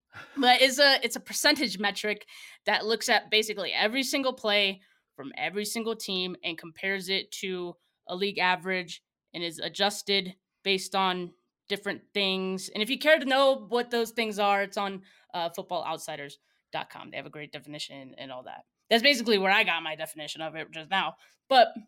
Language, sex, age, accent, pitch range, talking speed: English, female, 20-39, American, 190-235 Hz, 185 wpm